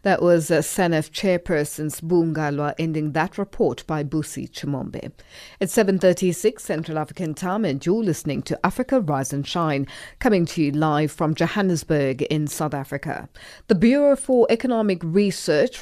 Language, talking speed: English, 145 wpm